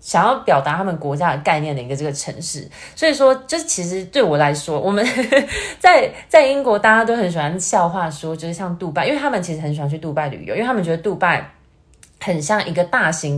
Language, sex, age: Chinese, female, 20-39